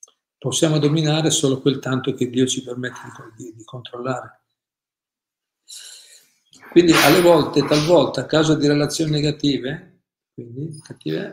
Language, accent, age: Italian, native, 50-69